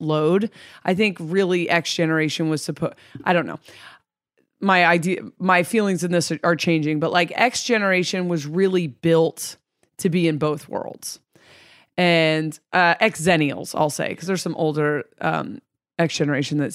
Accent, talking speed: American, 170 wpm